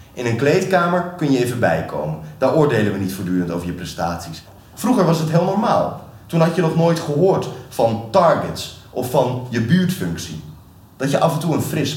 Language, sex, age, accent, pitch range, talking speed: Dutch, male, 30-49, Dutch, 100-145 Hz, 195 wpm